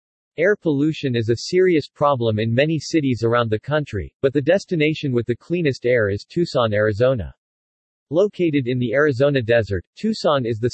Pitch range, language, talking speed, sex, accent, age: 115-150 Hz, English, 170 wpm, male, American, 40-59